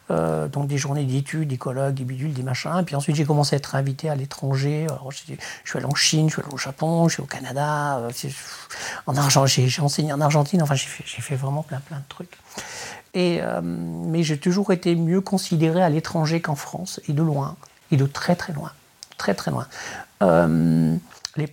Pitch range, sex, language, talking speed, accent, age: 140-175 Hz, male, French, 220 wpm, French, 50-69